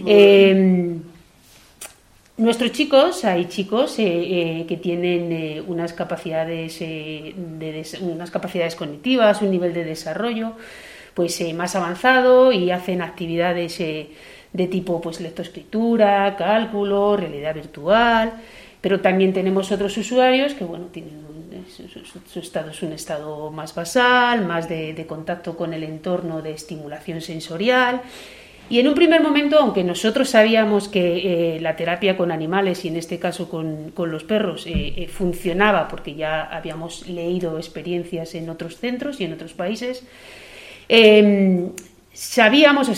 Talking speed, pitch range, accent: 145 wpm, 170-220 Hz, Spanish